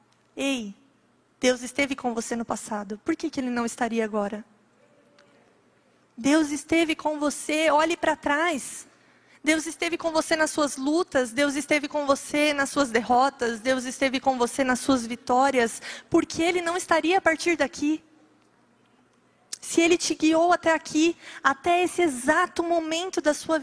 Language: Portuguese